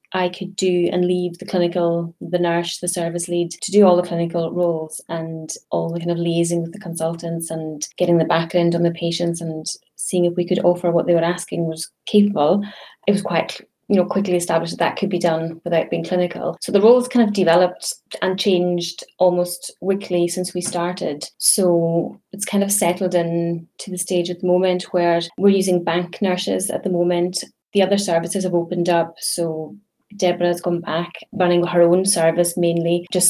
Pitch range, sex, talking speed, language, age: 170-185 Hz, female, 200 wpm, English, 20-39